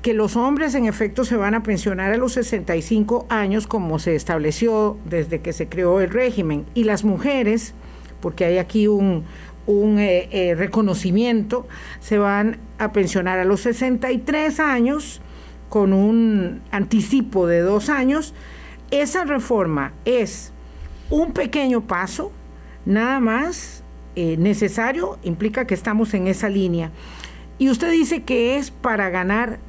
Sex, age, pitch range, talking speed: female, 50-69, 195-255 Hz, 140 wpm